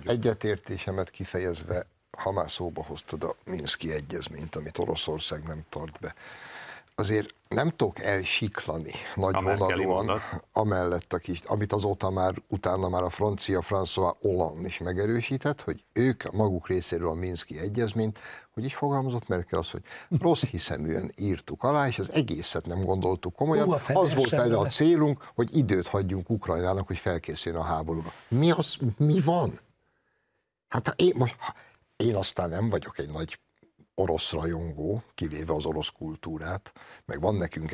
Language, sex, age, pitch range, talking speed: Hungarian, male, 60-79, 85-110 Hz, 145 wpm